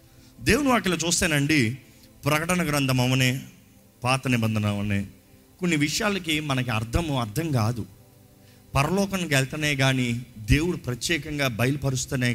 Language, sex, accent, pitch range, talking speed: Telugu, male, native, 125-195 Hz, 100 wpm